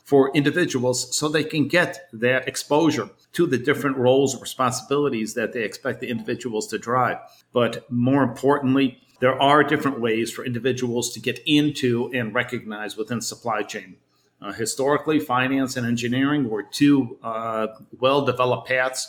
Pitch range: 120-140 Hz